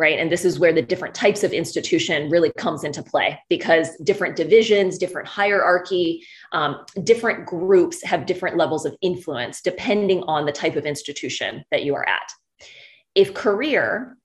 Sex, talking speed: female, 165 wpm